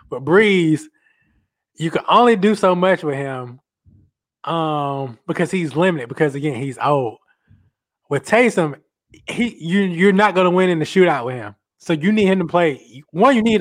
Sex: male